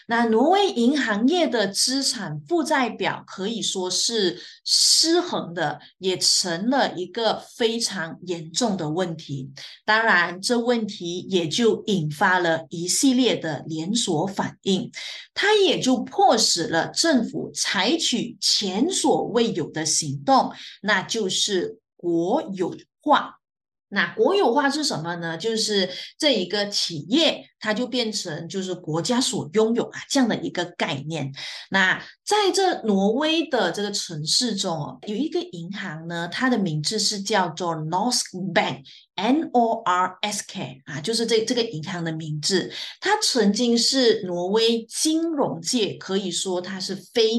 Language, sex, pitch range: Chinese, female, 175-245 Hz